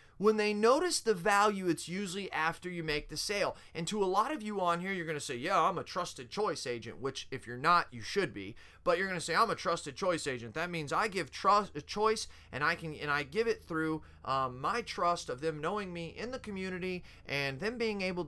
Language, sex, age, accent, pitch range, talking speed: English, male, 30-49, American, 140-180 Hz, 250 wpm